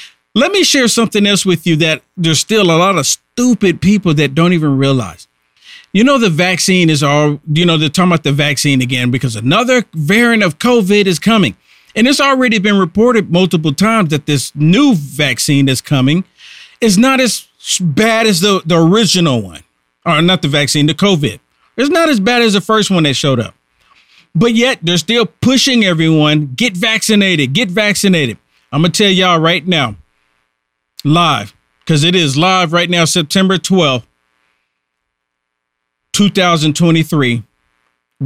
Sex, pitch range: male, 140-205 Hz